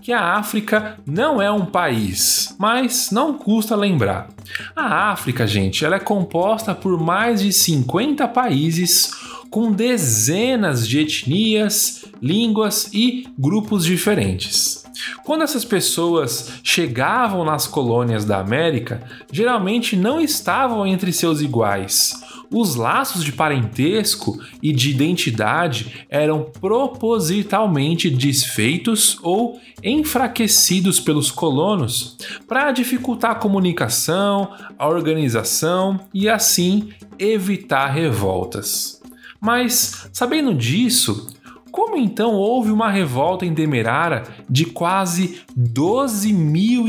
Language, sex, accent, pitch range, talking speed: Portuguese, male, Brazilian, 145-225 Hz, 105 wpm